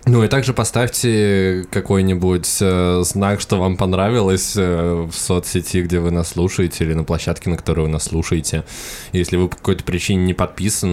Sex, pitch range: male, 80-95 Hz